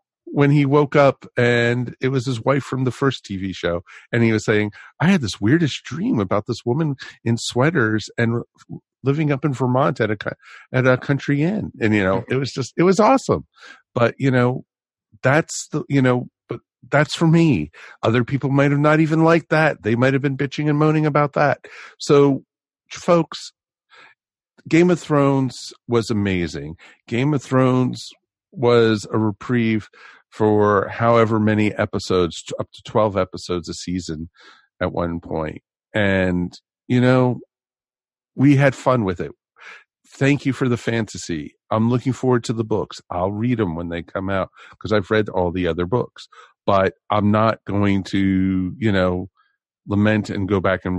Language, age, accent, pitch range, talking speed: English, 50-69, American, 100-135 Hz, 170 wpm